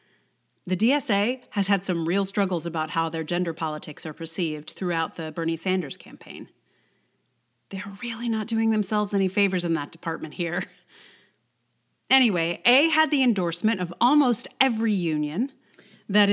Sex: female